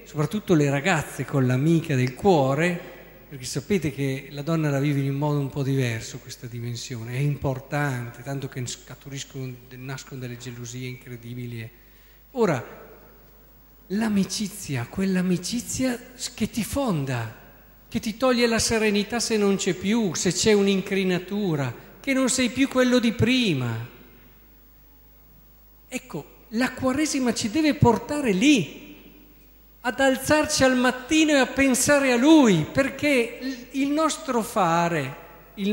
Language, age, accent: Italian, 50-69, native